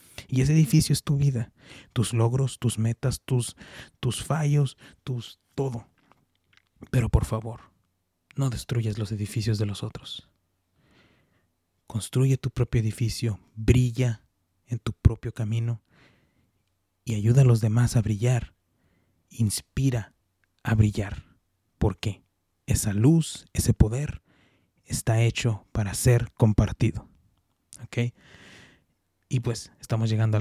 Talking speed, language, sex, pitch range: 120 wpm, English, male, 105-125 Hz